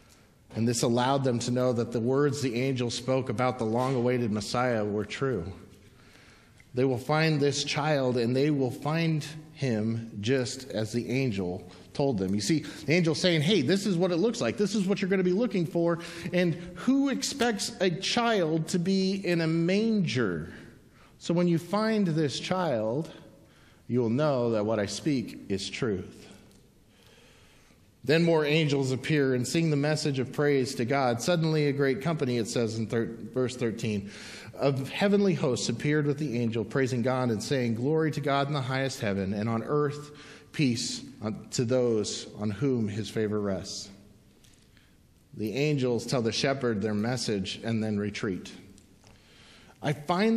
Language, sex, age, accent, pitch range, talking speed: English, male, 40-59, American, 115-160 Hz, 170 wpm